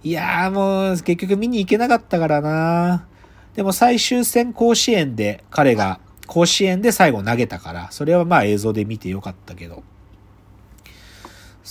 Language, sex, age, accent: Japanese, male, 40-59, native